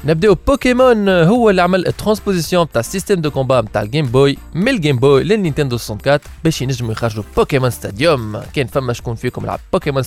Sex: male